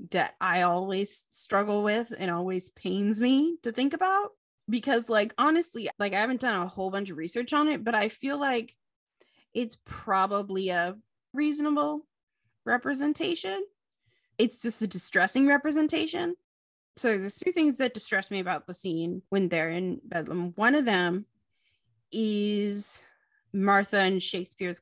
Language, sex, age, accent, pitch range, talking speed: English, female, 20-39, American, 180-235 Hz, 145 wpm